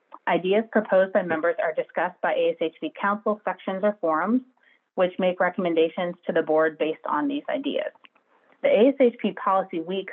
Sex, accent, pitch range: female, American, 170-210 Hz